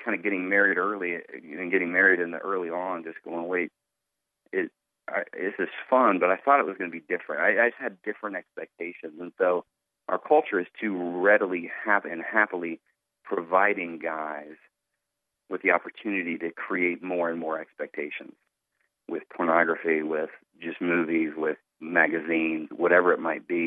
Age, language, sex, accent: 40-59, English, male, American